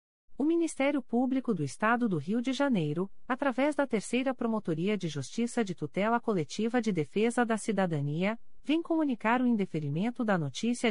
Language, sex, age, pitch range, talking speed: Portuguese, female, 40-59, 170-255 Hz, 155 wpm